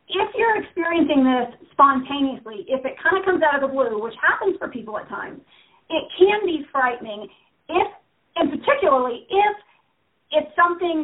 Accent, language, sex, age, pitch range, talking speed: American, English, female, 40-59, 230-300 Hz, 165 wpm